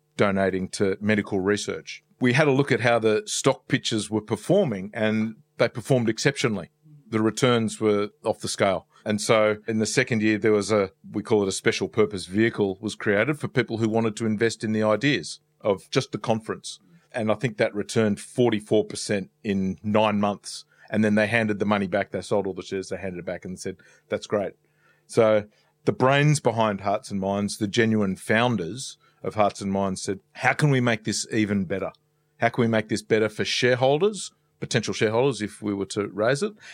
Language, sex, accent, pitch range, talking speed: English, male, Australian, 105-125 Hz, 200 wpm